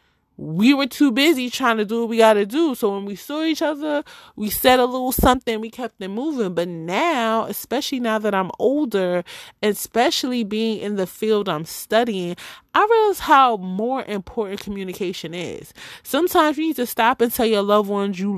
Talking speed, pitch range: 195 wpm, 190-245 Hz